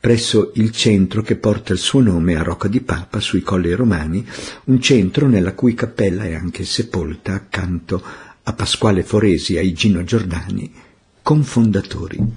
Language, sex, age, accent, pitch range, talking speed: Italian, male, 50-69, native, 95-120 Hz, 155 wpm